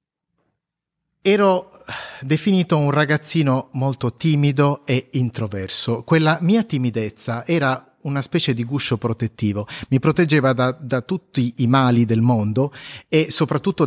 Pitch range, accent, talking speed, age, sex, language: 120-155 Hz, native, 120 wpm, 30-49, male, Italian